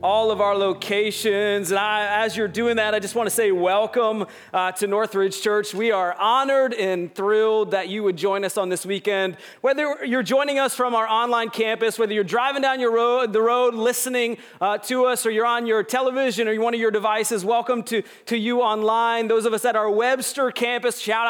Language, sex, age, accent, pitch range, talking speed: English, male, 30-49, American, 200-245 Hz, 215 wpm